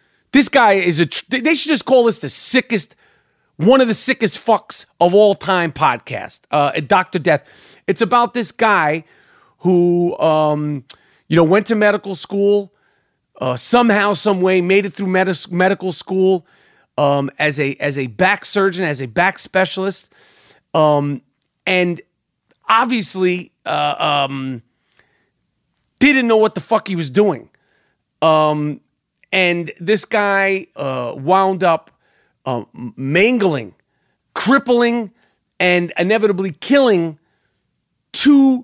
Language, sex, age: English, male, 30-49